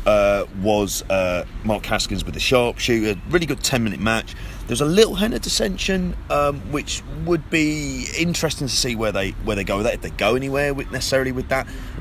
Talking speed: 210 wpm